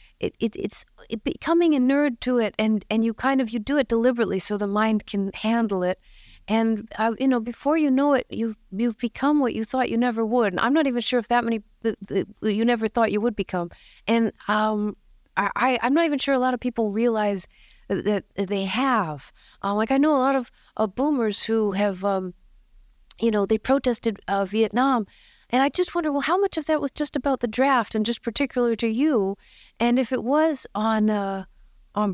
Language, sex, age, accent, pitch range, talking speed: English, female, 40-59, American, 205-255 Hz, 220 wpm